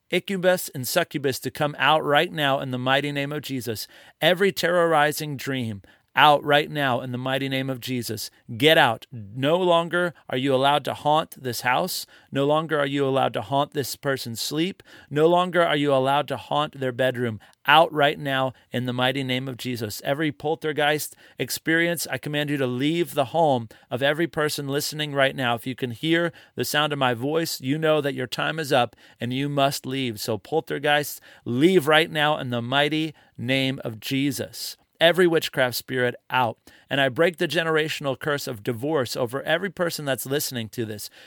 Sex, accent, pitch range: male, American, 130-155 Hz